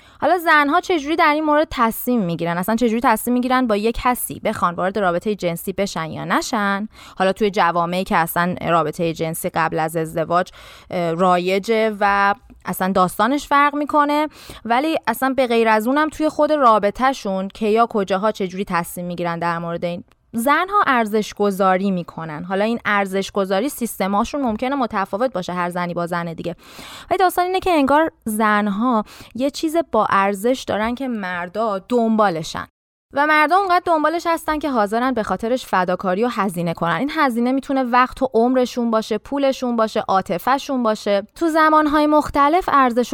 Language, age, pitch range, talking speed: Persian, 20-39, 190-265 Hz, 165 wpm